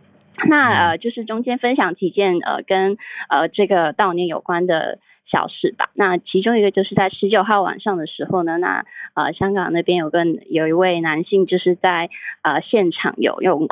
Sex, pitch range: female, 165-195 Hz